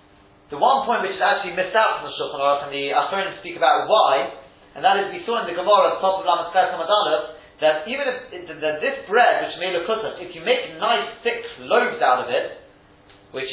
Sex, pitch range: male, 140-210 Hz